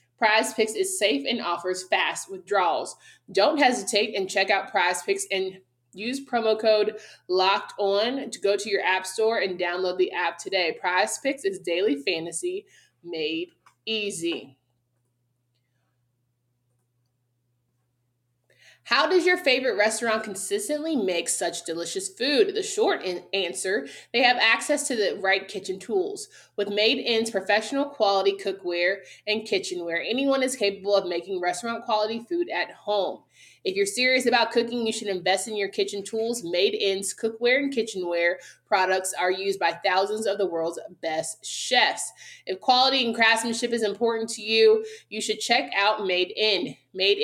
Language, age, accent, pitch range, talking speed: English, 20-39, American, 180-240 Hz, 155 wpm